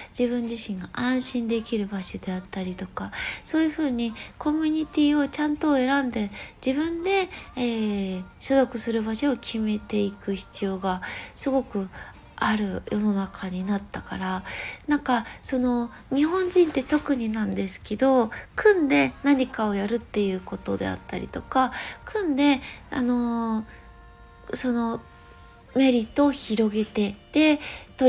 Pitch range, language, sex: 215-275 Hz, Japanese, female